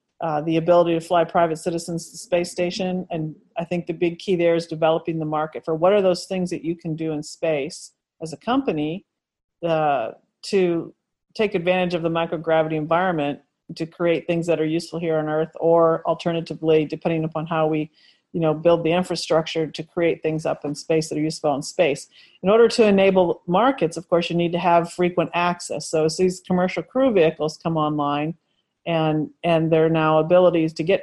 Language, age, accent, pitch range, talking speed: English, 40-59, American, 160-185 Hz, 200 wpm